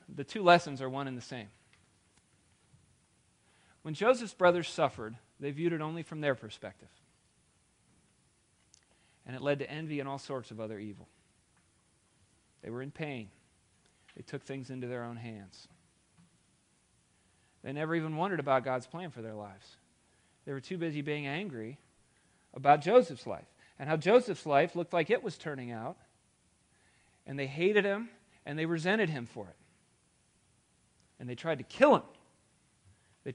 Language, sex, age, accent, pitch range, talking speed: English, male, 40-59, American, 110-160 Hz, 155 wpm